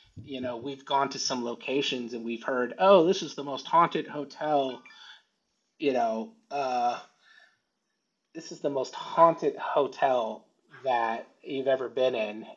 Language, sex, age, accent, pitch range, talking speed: English, male, 30-49, American, 120-160 Hz, 150 wpm